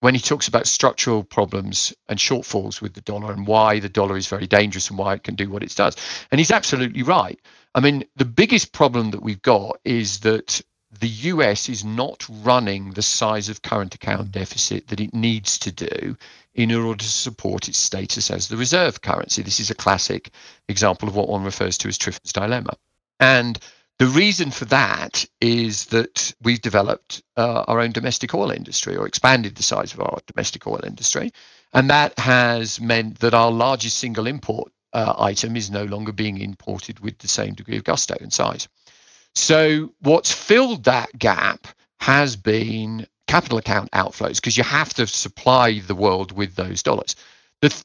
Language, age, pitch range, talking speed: English, 50-69, 105-130 Hz, 185 wpm